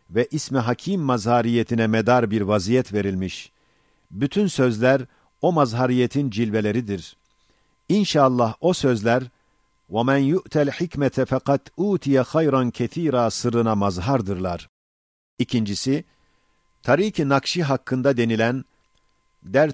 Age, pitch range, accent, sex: 50-69, 110-140 Hz, native, male